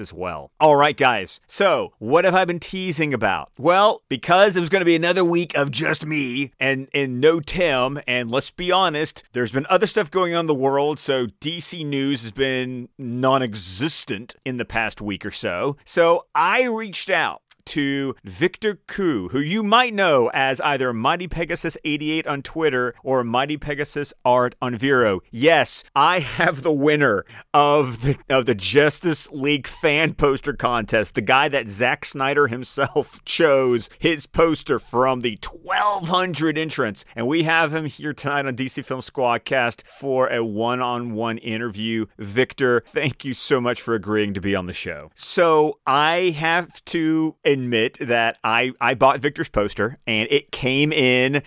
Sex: male